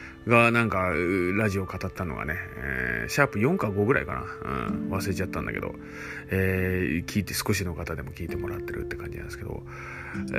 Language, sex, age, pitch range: Japanese, male, 30-49, 95-150 Hz